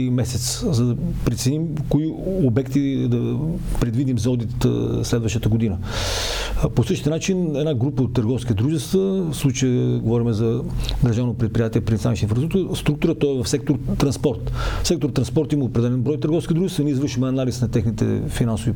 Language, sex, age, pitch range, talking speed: Bulgarian, male, 40-59, 115-150 Hz, 145 wpm